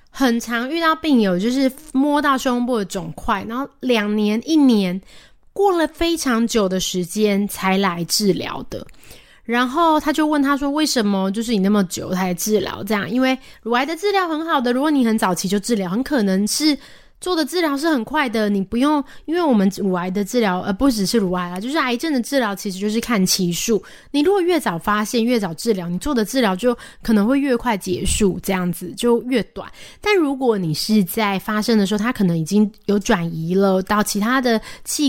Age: 20-39